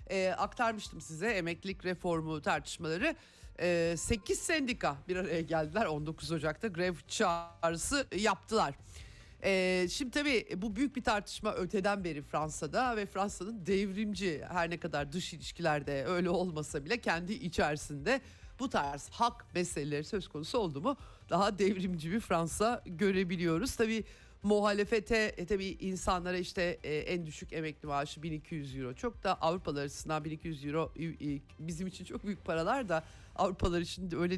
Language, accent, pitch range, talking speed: Turkish, native, 150-200 Hz, 140 wpm